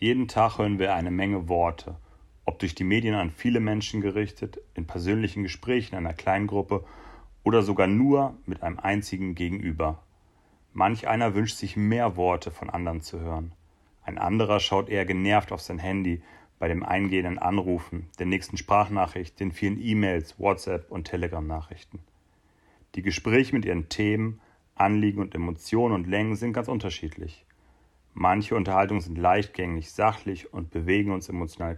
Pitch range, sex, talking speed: 85-105 Hz, male, 155 wpm